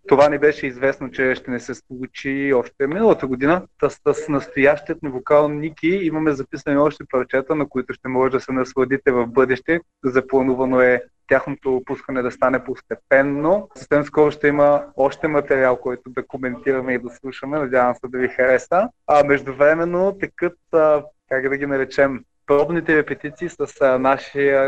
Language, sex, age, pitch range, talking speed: Bulgarian, male, 20-39, 130-150 Hz, 165 wpm